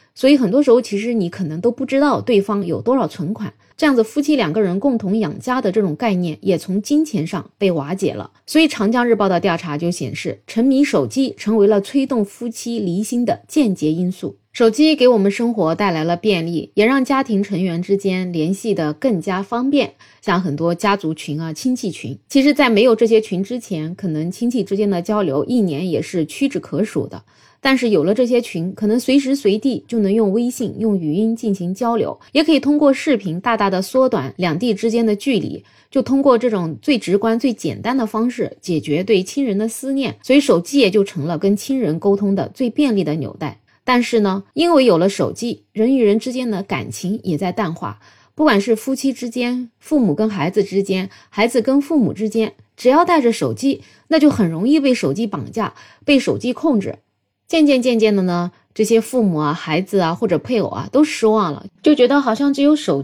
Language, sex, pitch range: Chinese, female, 185-255 Hz